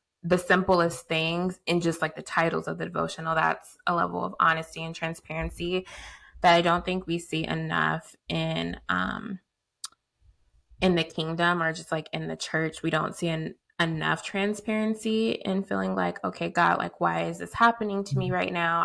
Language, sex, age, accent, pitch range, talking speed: English, female, 20-39, American, 165-190 Hz, 180 wpm